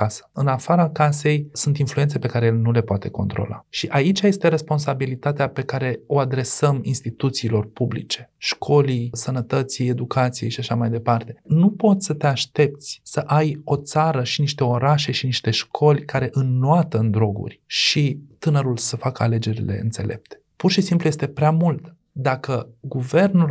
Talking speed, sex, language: 160 wpm, male, Romanian